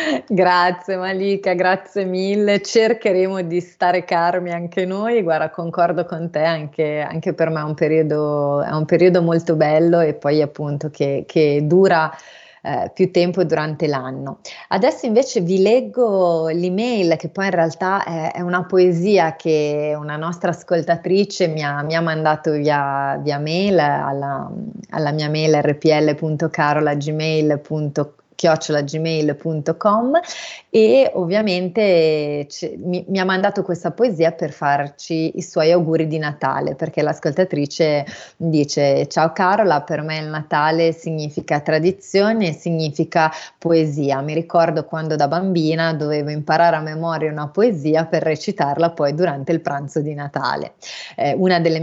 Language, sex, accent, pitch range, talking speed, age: Italian, female, native, 150-180 Hz, 135 wpm, 30-49